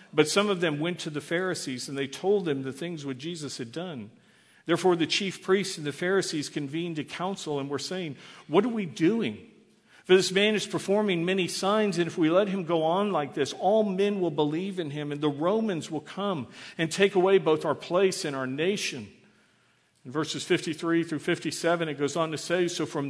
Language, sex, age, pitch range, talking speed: English, male, 50-69, 145-185 Hz, 215 wpm